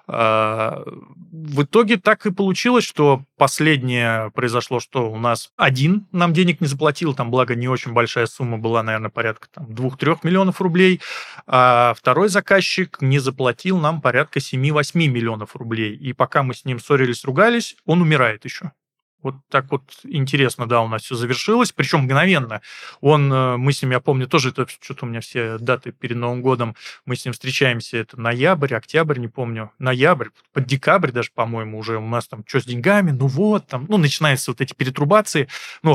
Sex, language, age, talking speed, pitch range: male, Russian, 20-39, 175 wpm, 120-155 Hz